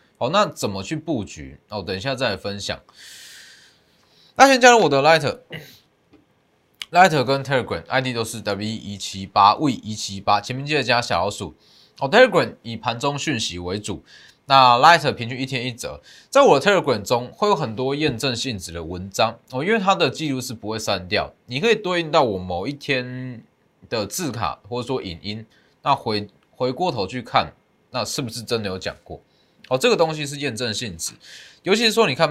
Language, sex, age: Chinese, male, 20-39